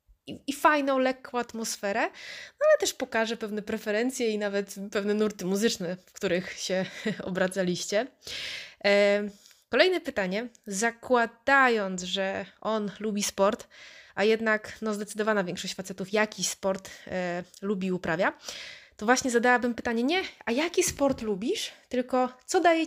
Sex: female